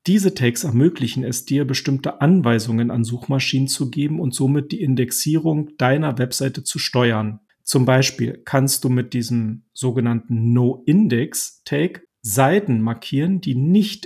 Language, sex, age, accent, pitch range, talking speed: German, male, 40-59, German, 125-150 Hz, 130 wpm